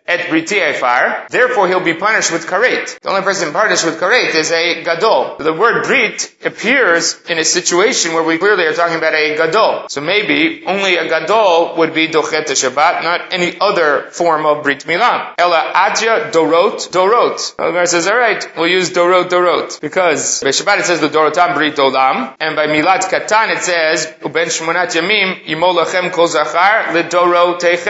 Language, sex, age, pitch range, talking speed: English, male, 30-49, 160-190 Hz, 180 wpm